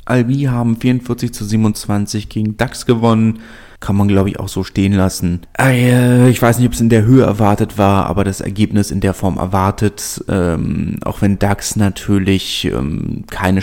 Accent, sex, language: German, male, German